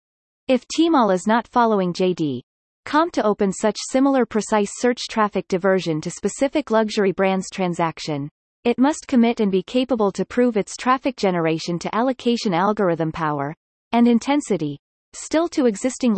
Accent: American